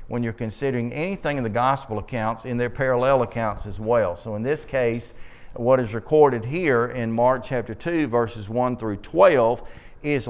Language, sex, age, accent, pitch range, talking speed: English, male, 40-59, American, 110-130 Hz, 180 wpm